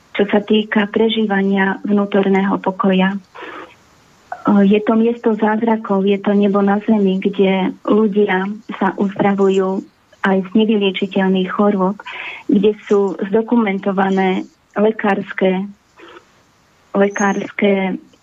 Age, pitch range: 20-39, 195-220 Hz